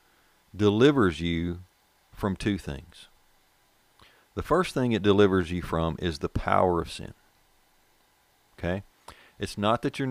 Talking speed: 130 wpm